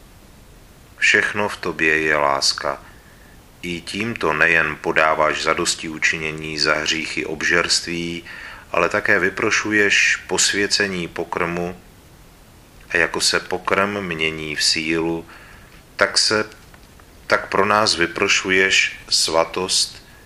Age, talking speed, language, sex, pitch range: 40-59, 100 wpm, Czech, male, 80-90 Hz